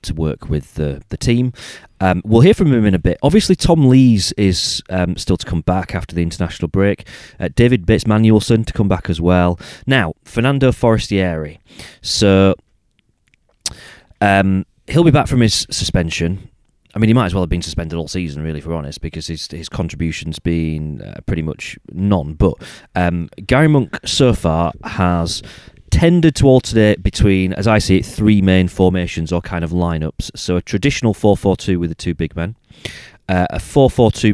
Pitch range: 85-110 Hz